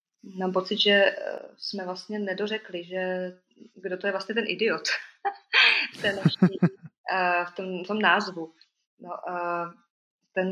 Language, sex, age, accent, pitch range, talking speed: Czech, female, 20-39, native, 170-195 Hz, 125 wpm